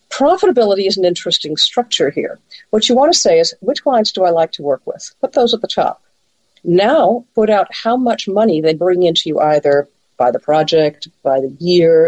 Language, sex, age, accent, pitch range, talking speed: English, female, 50-69, American, 160-230 Hz, 210 wpm